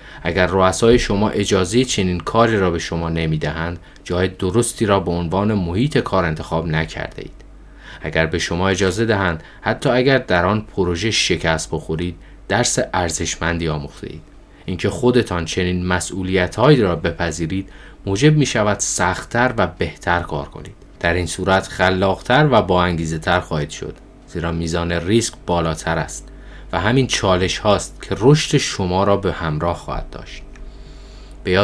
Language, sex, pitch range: Persian, male, 85-110 Hz